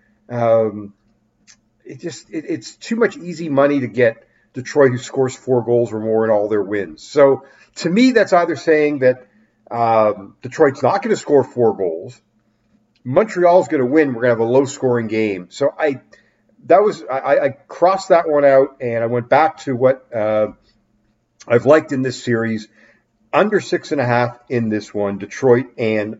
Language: English